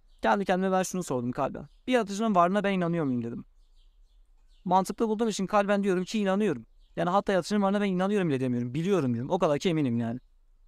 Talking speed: 195 wpm